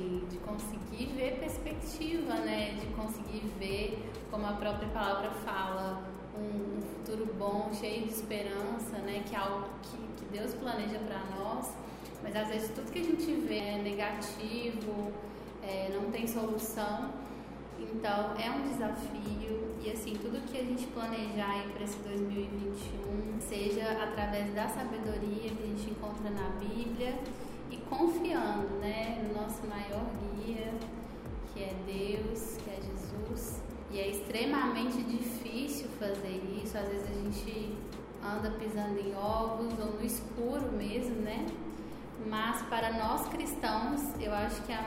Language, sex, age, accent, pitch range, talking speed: Portuguese, female, 10-29, Brazilian, 205-230 Hz, 145 wpm